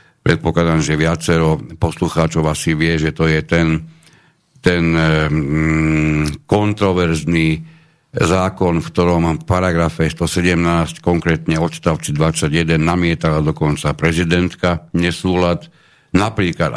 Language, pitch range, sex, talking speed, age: Slovak, 80-100 Hz, male, 95 wpm, 60-79